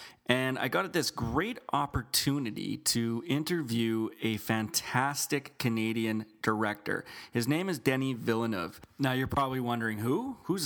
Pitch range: 110-140 Hz